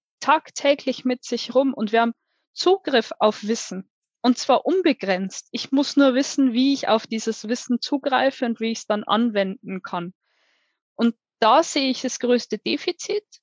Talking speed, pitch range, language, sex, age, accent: 165 wpm, 225-285 Hz, German, female, 20-39, German